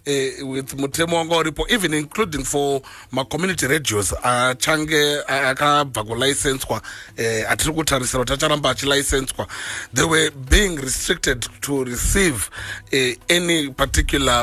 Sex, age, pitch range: male, 30-49, 125-160 Hz